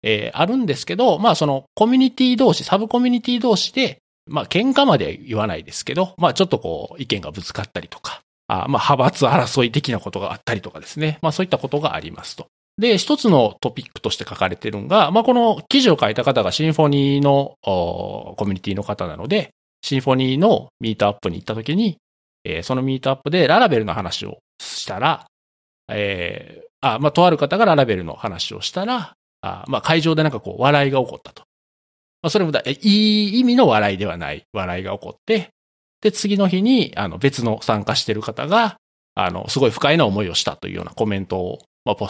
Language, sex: Japanese, male